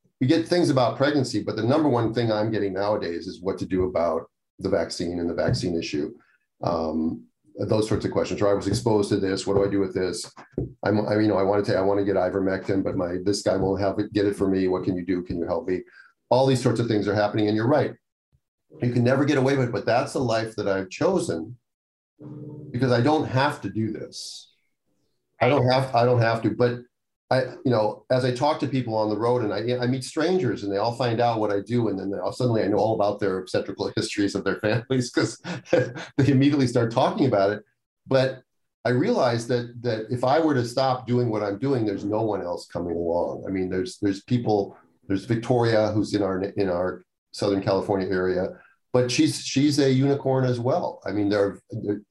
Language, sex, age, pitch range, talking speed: English, male, 40-59, 100-125 Hz, 235 wpm